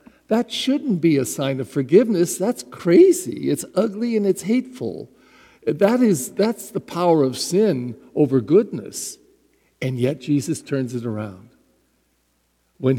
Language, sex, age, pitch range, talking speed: English, male, 60-79, 130-190 Hz, 140 wpm